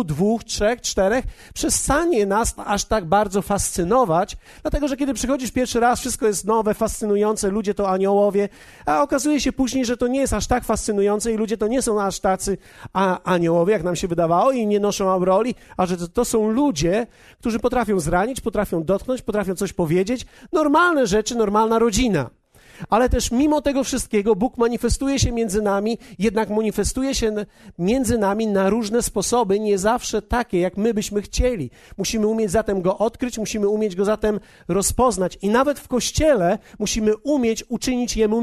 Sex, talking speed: male, 170 wpm